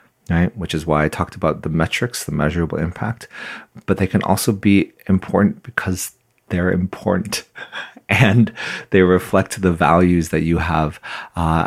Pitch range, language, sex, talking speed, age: 80-95 Hz, English, male, 155 wpm, 30-49